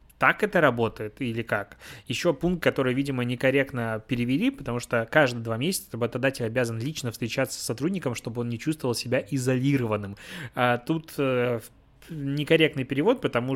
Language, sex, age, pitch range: Russian, male, 20-39, 120-140 Hz